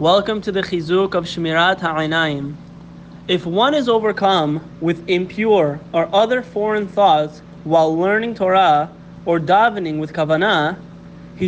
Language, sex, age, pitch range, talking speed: English, male, 30-49, 170-215 Hz, 130 wpm